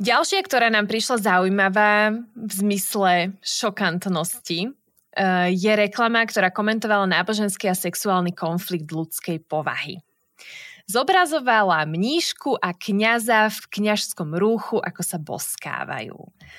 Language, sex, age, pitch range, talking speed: Slovak, female, 20-39, 185-230 Hz, 100 wpm